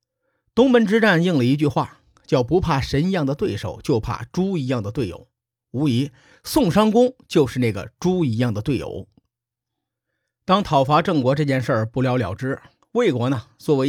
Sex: male